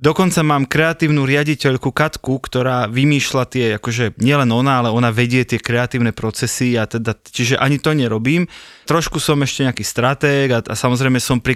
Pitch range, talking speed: 125-150 Hz, 170 wpm